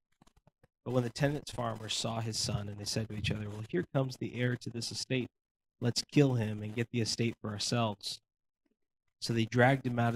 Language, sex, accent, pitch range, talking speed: English, male, American, 100-120 Hz, 215 wpm